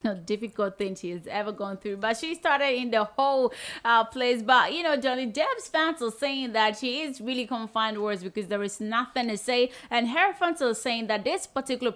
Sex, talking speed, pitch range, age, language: female, 220 wpm, 210-260 Hz, 30-49, English